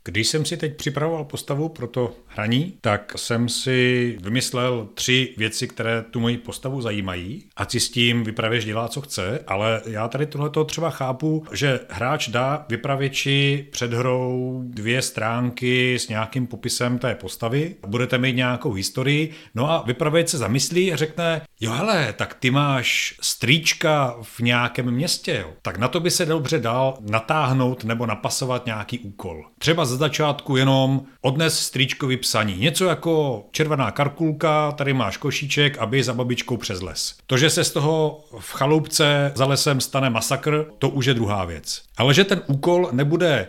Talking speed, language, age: 165 wpm, Czech, 40-59